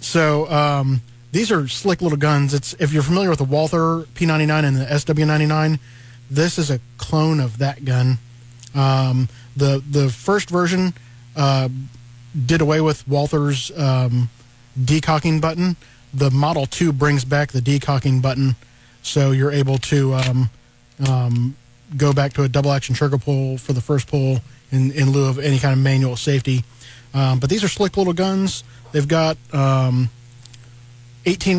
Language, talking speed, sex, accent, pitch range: English, 160 wpm, male, American, 125-150 Hz